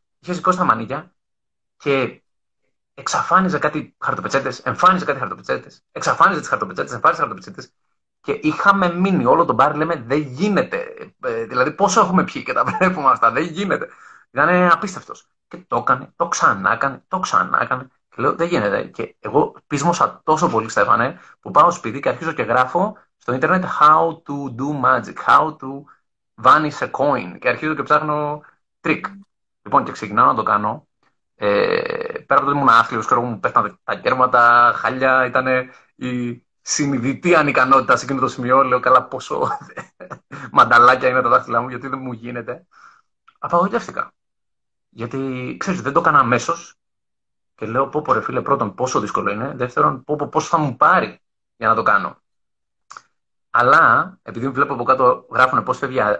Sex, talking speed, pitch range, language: male, 145 wpm, 130-175 Hz, Greek